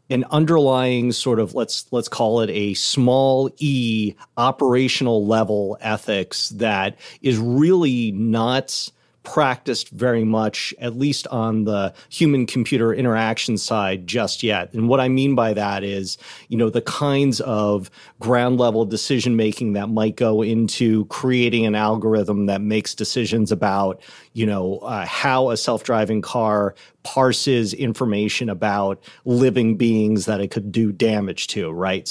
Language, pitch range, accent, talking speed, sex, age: English, 105-130 Hz, American, 140 wpm, male, 40-59